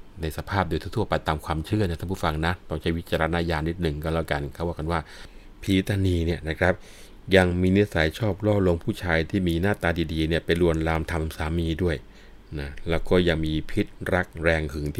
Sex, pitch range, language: male, 80-95 Hz, Thai